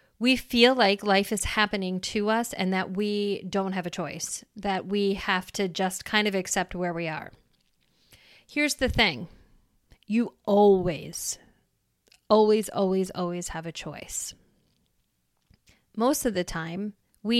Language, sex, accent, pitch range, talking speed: English, female, American, 175-210 Hz, 145 wpm